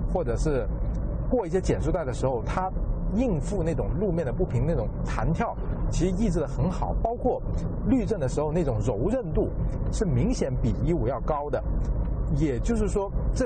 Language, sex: Chinese, male